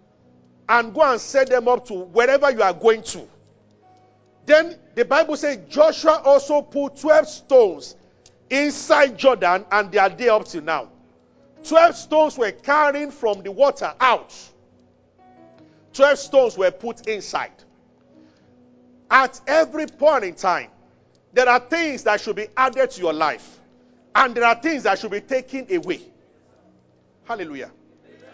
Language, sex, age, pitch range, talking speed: English, male, 40-59, 185-280 Hz, 145 wpm